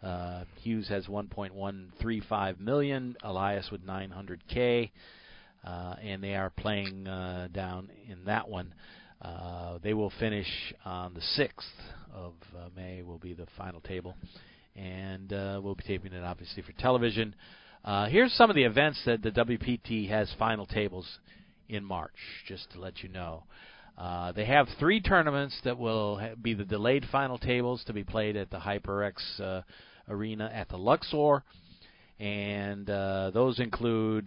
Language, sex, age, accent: English, male, 40-59, American